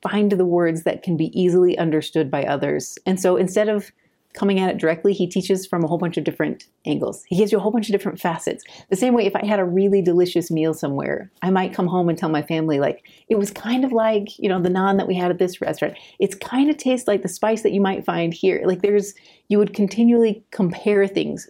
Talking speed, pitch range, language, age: 250 wpm, 160-205 Hz, English, 30-49